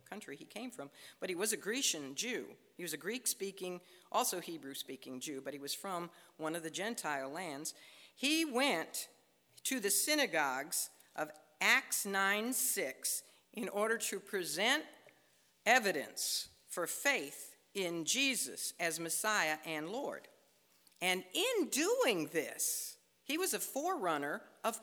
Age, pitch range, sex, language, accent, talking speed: 50-69, 175-275 Hz, female, English, American, 145 wpm